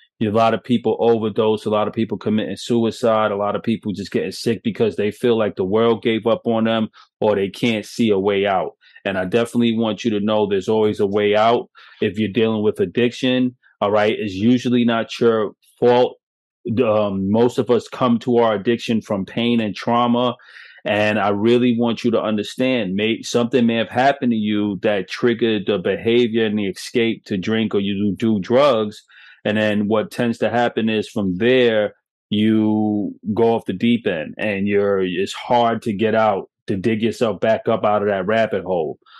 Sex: male